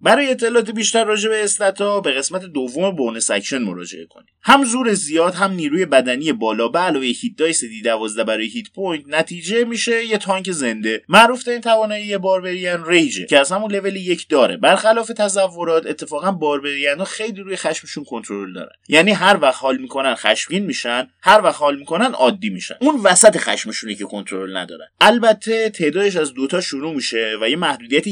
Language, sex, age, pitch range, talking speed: Persian, male, 30-49, 125-210 Hz, 175 wpm